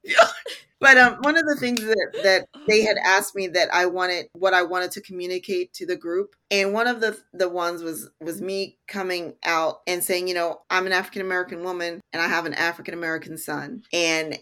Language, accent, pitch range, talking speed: English, American, 180-220 Hz, 205 wpm